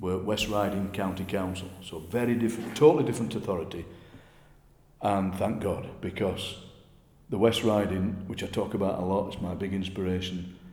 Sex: male